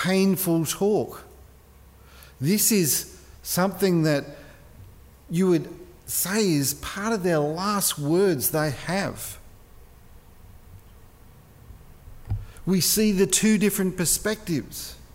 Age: 50-69